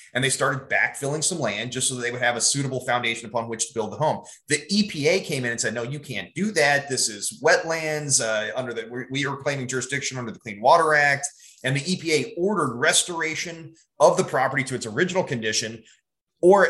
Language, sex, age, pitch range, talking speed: English, male, 30-49, 125-155 Hz, 215 wpm